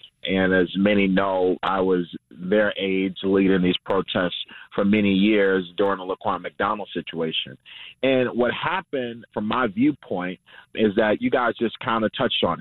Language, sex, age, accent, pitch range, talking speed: English, male, 40-59, American, 100-130 Hz, 160 wpm